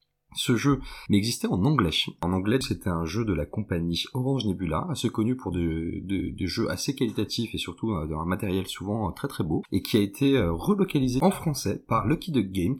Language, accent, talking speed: French, French, 195 wpm